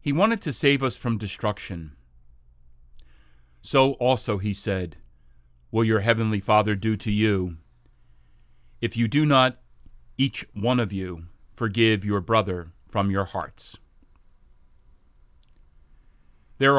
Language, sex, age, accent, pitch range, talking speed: English, male, 40-59, American, 90-120 Hz, 120 wpm